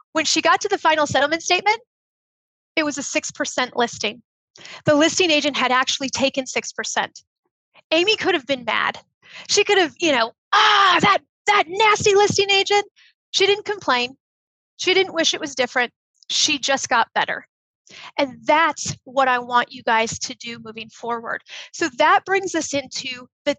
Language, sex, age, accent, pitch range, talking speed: English, female, 30-49, American, 265-370 Hz, 170 wpm